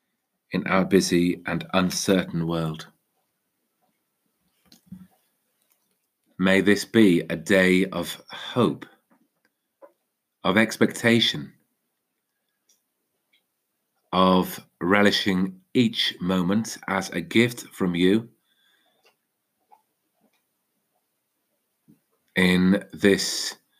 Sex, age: male, 40-59